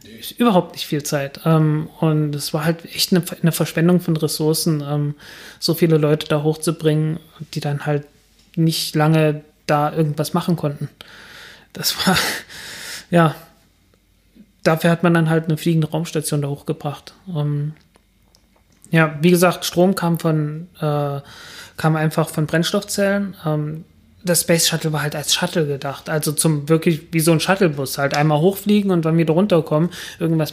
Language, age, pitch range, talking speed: German, 30-49, 150-170 Hz, 145 wpm